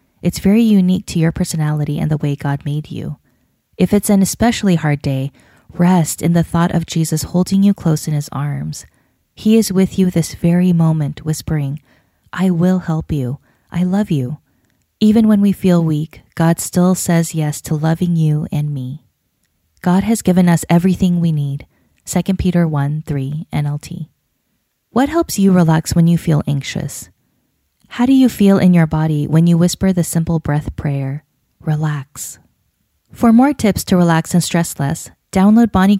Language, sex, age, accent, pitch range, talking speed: English, female, 20-39, American, 150-190 Hz, 175 wpm